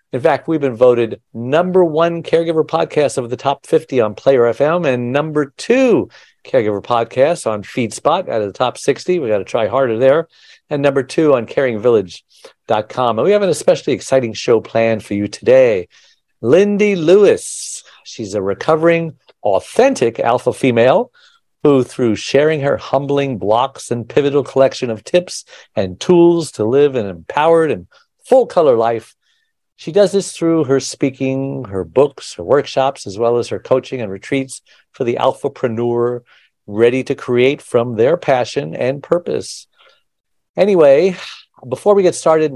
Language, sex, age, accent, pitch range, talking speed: English, male, 50-69, American, 120-180 Hz, 155 wpm